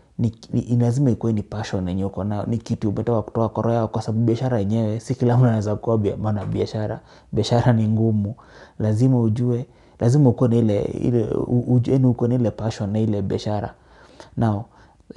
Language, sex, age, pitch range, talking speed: English, male, 30-49, 110-125 Hz, 160 wpm